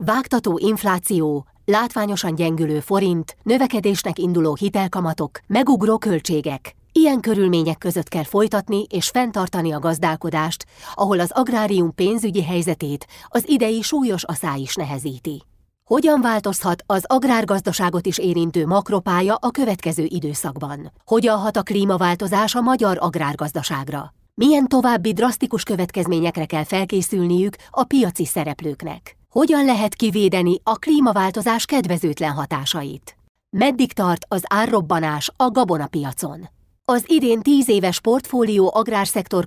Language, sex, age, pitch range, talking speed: Hungarian, female, 30-49, 165-220 Hz, 115 wpm